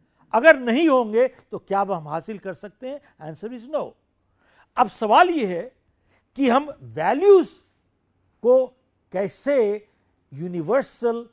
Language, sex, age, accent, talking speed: Hindi, male, 60-79, native, 125 wpm